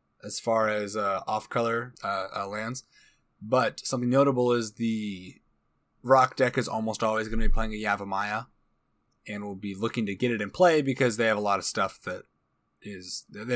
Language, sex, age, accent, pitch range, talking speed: English, male, 20-39, American, 105-130 Hz, 190 wpm